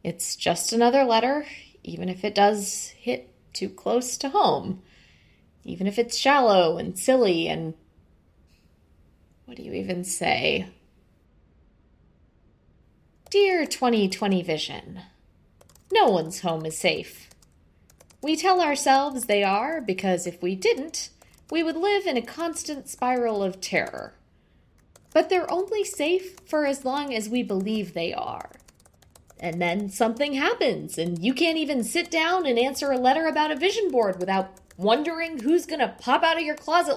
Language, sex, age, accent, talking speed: English, female, 20-39, American, 145 wpm